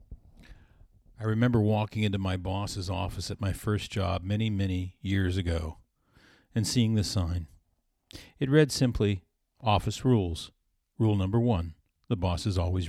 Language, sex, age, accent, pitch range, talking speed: English, male, 50-69, American, 95-120 Hz, 145 wpm